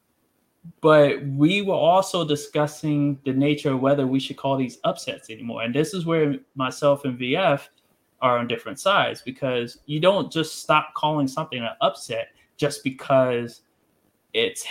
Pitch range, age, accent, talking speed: 125-155 Hz, 20-39, American, 155 wpm